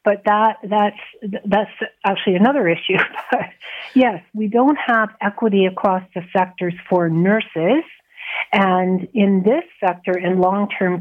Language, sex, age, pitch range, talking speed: English, female, 50-69, 185-225 Hz, 130 wpm